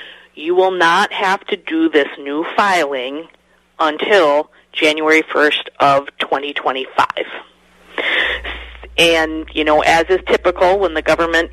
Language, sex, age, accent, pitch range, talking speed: English, female, 40-59, American, 145-185 Hz, 120 wpm